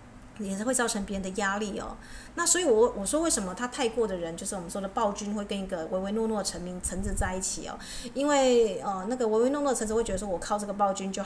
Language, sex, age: Chinese, female, 30-49